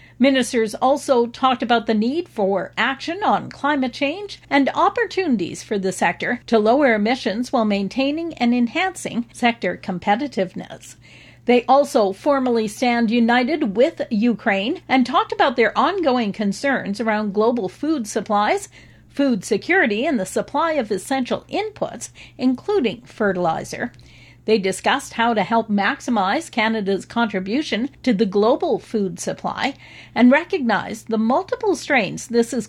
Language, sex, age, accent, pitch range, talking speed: English, female, 50-69, American, 210-280 Hz, 130 wpm